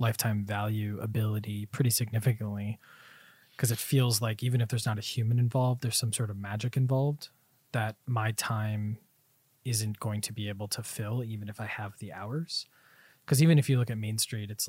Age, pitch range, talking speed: 20-39, 110-135 Hz, 190 wpm